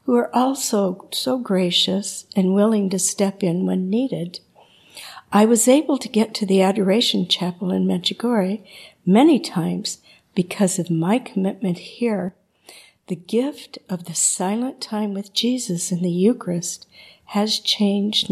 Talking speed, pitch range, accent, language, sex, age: 140 wpm, 185-230 Hz, American, English, female, 50-69